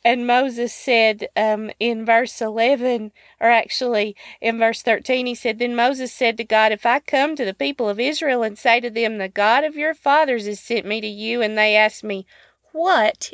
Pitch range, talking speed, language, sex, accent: 210-255 Hz, 205 wpm, English, female, American